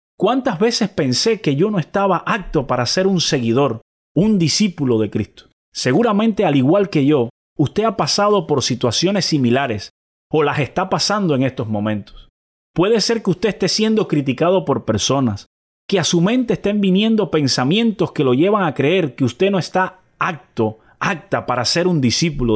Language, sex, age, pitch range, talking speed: Spanish, male, 30-49, 115-185 Hz, 175 wpm